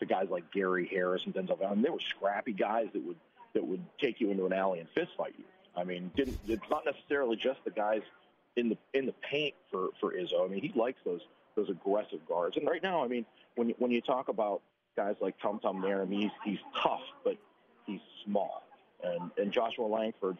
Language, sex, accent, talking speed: English, male, American, 220 wpm